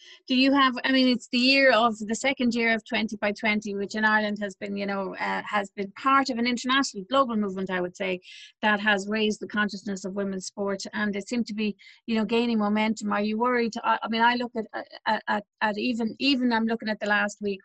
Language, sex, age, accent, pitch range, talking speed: English, female, 30-49, Irish, 200-235 Hz, 245 wpm